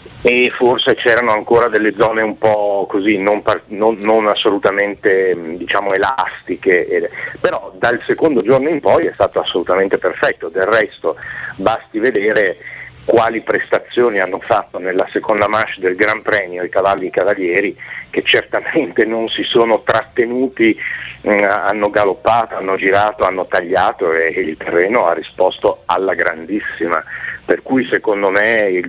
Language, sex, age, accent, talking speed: Italian, male, 50-69, native, 150 wpm